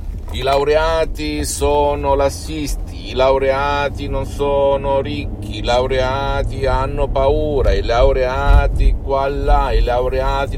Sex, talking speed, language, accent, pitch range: male, 110 wpm, Italian, native, 85-130 Hz